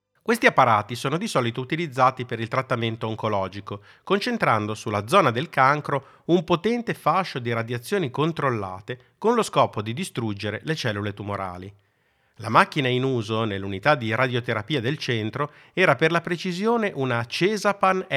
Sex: male